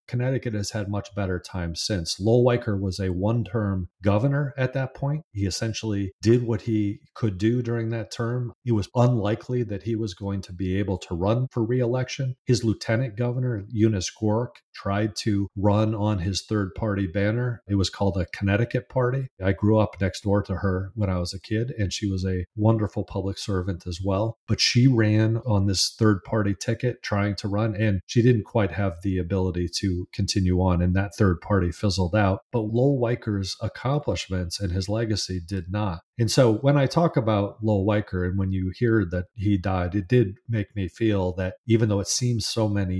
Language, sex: English, male